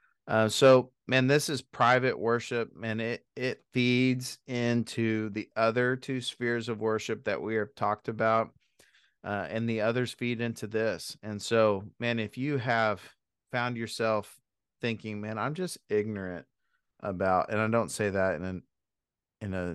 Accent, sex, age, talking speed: American, male, 40-59, 160 wpm